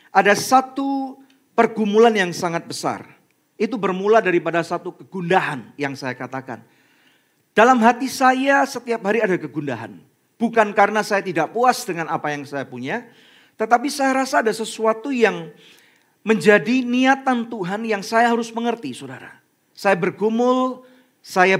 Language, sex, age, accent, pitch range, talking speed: Indonesian, male, 40-59, native, 160-225 Hz, 135 wpm